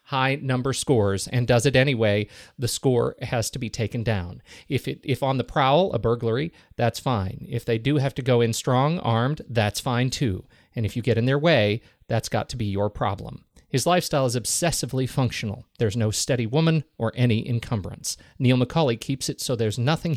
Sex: male